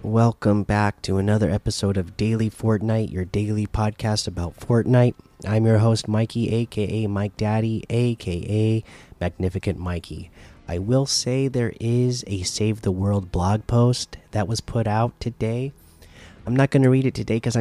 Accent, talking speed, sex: American, 160 wpm, male